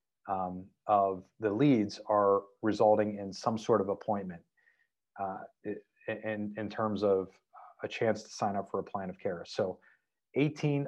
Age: 40-59